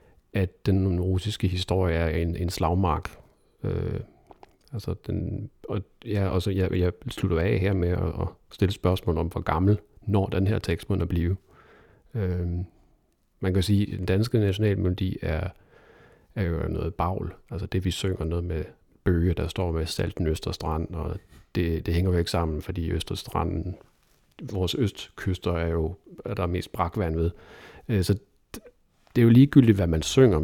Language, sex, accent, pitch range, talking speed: Danish, male, native, 85-100 Hz, 175 wpm